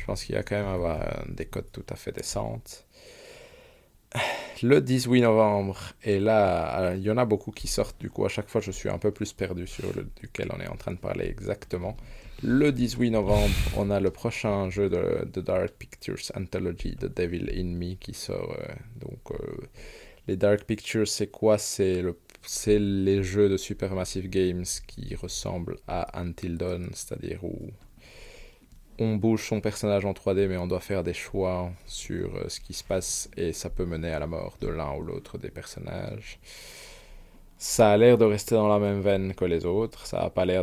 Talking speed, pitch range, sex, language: 200 wpm, 90-110 Hz, male, French